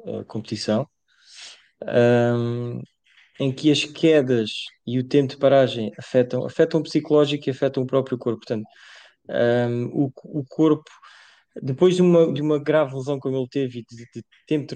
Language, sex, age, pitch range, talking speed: English, male, 20-39, 125-150 Hz, 145 wpm